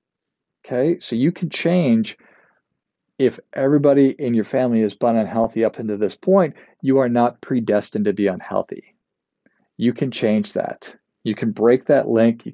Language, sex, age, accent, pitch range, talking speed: English, male, 40-59, American, 110-145 Hz, 165 wpm